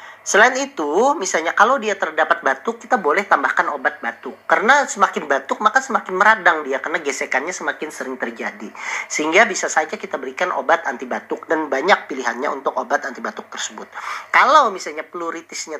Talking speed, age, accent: 155 wpm, 40-59, native